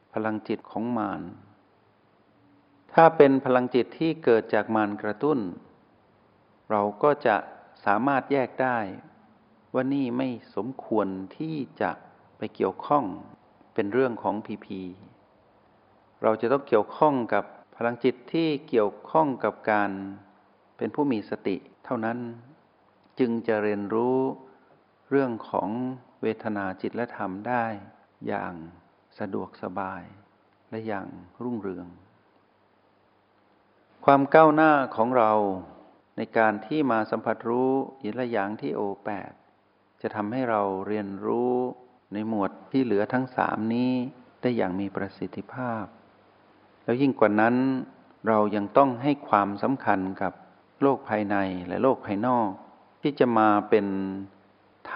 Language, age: Thai, 60-79